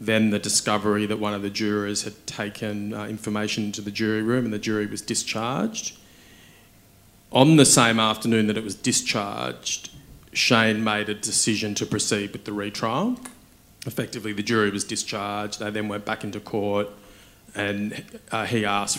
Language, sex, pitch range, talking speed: English, male, 100-110 Hz, 170 wpm